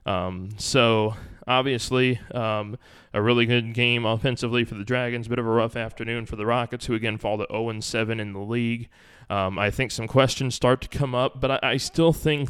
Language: English